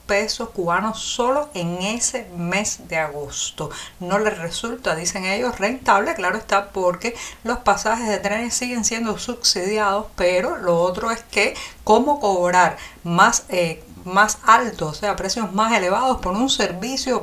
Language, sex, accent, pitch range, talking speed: Spanish, female, American, 175-220 Hz, 145 wpm